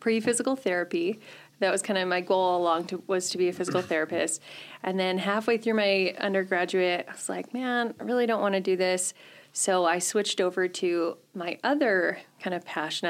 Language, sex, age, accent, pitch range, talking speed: English, female, 30-49, American, 175-210 Hz, 195 wpm